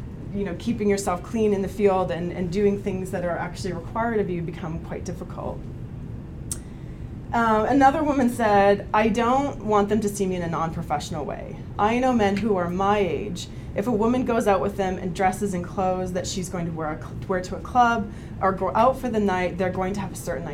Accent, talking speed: American, 230 wpm